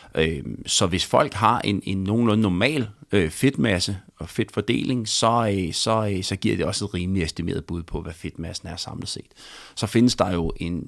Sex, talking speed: male, 200 wpm